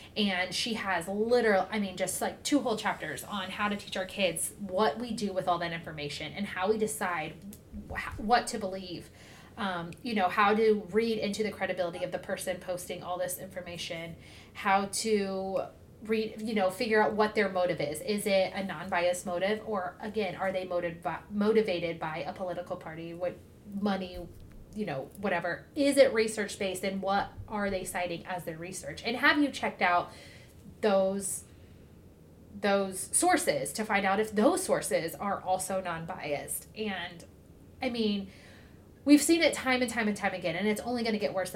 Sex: female